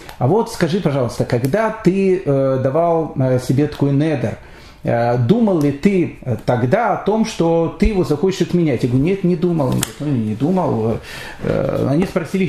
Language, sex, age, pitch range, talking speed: Russian, male, 40-59, 135-190 Hz, 150 wpm